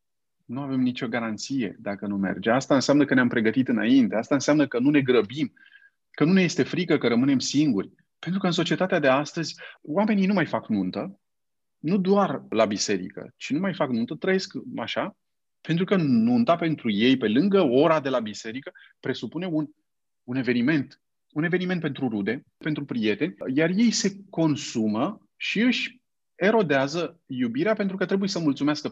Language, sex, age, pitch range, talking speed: Romanian, male, 30-49, 120-190 Hz, 170 wpm